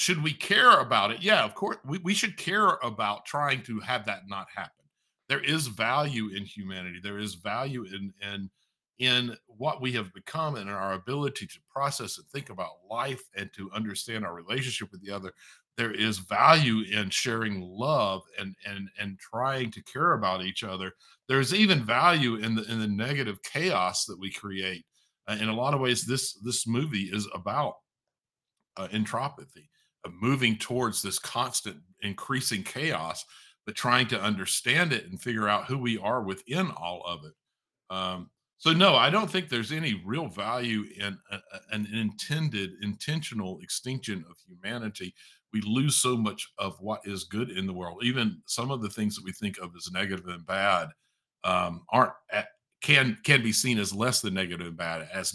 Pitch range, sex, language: 95-130 Hz, male, English